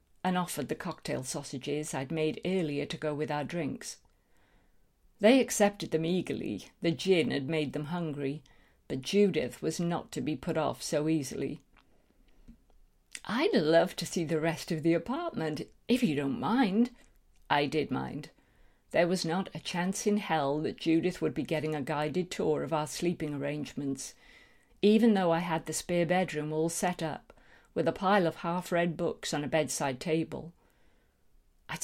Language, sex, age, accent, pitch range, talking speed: English, female, 50-69, British, 150-175 Hz, 170 wpm